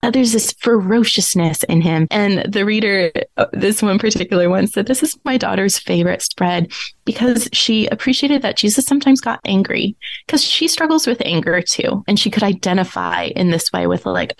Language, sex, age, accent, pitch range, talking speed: English, female, 20-39, American, 170-220 Hz, 180 wpm